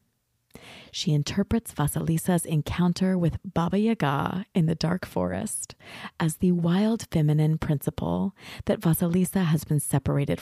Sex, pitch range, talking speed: female, 145-190 Hz, 120 wpm